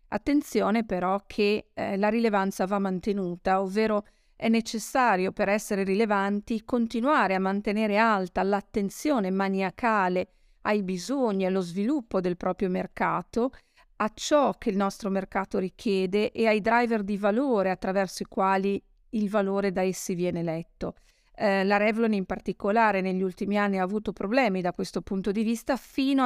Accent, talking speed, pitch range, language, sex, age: native, 150 wpm, 190-225 Hz, Italian, female, 50-69